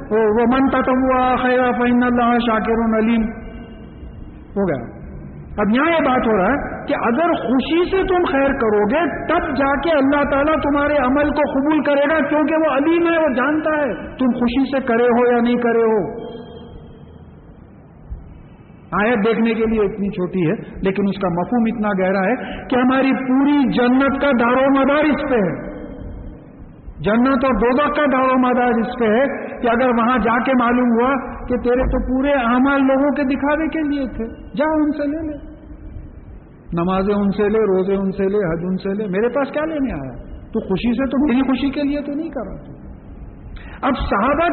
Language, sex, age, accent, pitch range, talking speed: English, male, 50-69, Indian, 225-285 Hz, 165 wpm